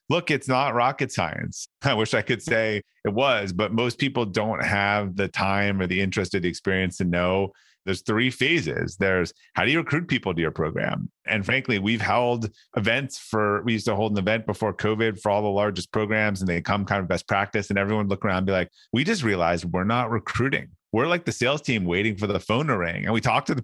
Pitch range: 95-120 Hz